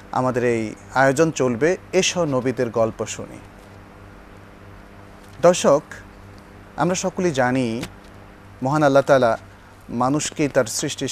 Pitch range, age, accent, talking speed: 100-140 Hz, 40-59, native, 95 wpm